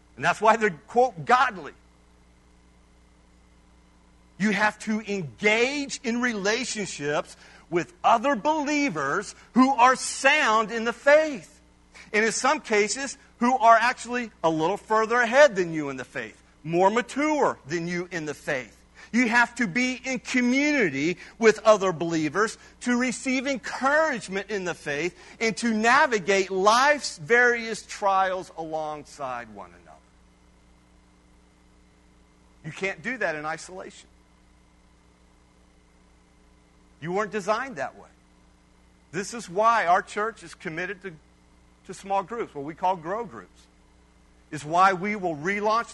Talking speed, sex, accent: 130 wpm, male, American